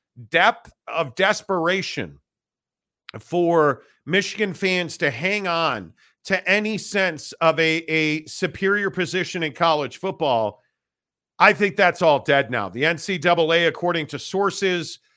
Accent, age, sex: American, 40-59, male